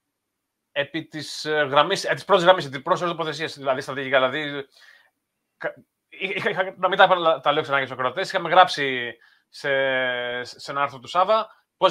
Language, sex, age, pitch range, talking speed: Greek, male, 30-49, 145-190 Hz, 155 wpm